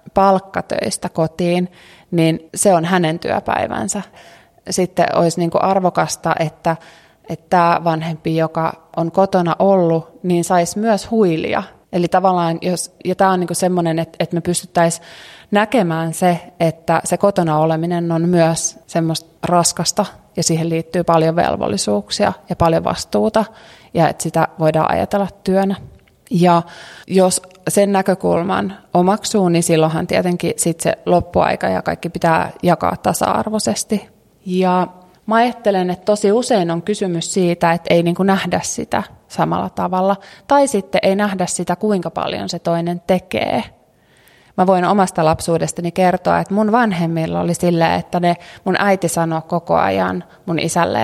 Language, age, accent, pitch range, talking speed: Finnish, 20-39, native, 165-195 Hz, 140 wpm